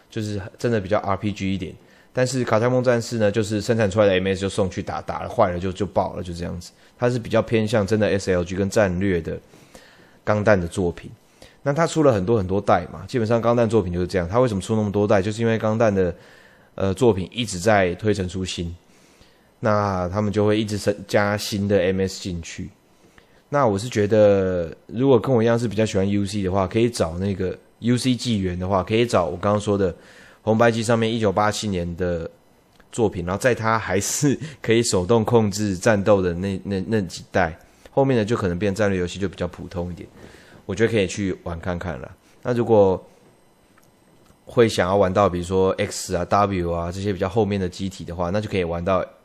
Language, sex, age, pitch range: Chinese, male, 20-39, 95-110 Hz